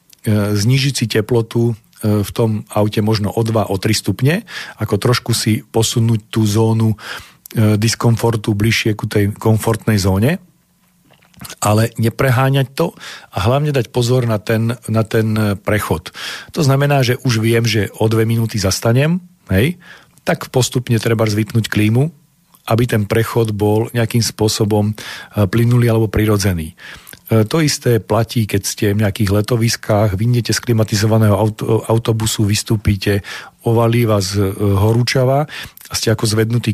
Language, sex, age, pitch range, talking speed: Slovak, male, 40-59, 105-130 Hz, 130 wpm